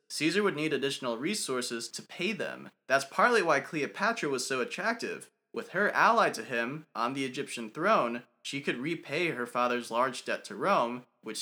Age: 20-39